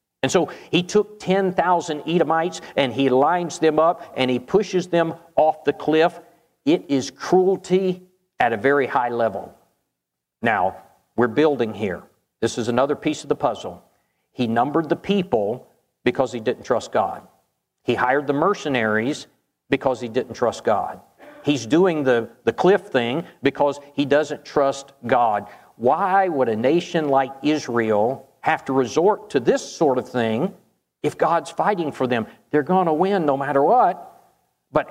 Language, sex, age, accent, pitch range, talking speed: English, male, 50-69, American, 130-175 Hz, 160 wpm